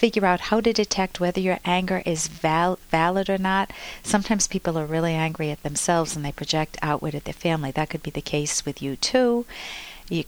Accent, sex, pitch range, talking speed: American, female, 150-185 Hz, 205 wpm